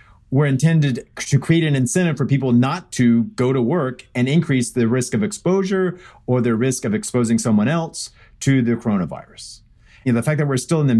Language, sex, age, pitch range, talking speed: English, male, 40-59, 115-155 Hz, 215 wpm